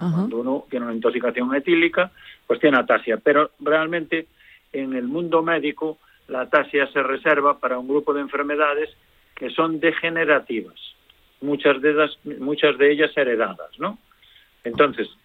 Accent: Spanish